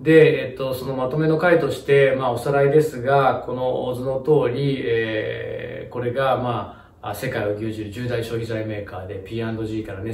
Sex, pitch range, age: male, 105-140 Hz, 20-39